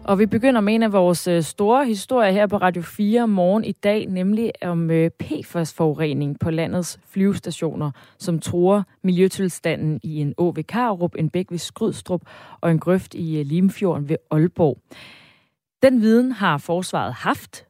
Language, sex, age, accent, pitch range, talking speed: Danish, female, 30-49, native, 160-205 Hz, 155 wpm